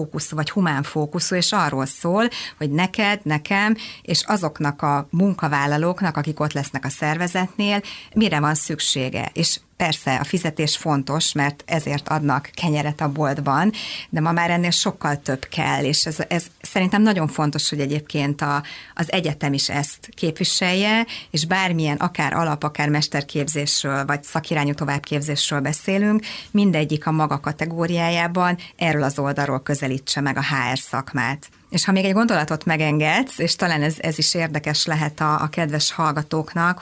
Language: Hungarian